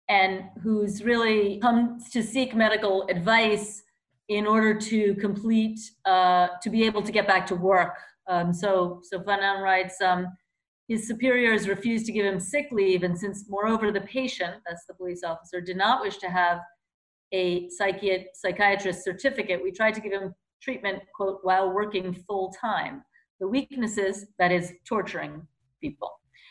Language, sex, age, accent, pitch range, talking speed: English, female, 40-59, American, 180-220 Hz, 155 wpm